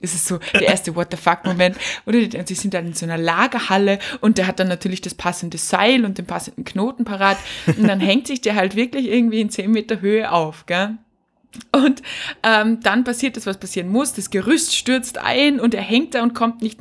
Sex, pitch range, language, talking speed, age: female, 195-245 Hz, German, 215 wpm, 20-39